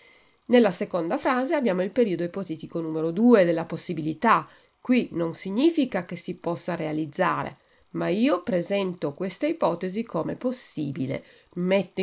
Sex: female